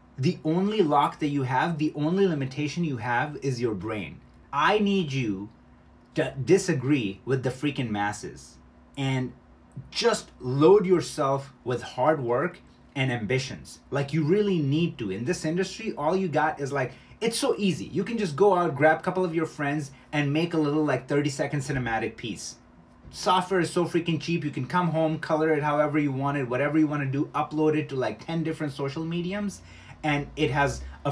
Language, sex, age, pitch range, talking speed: English, male, 30-49, 130-160 Hz, 195 wpm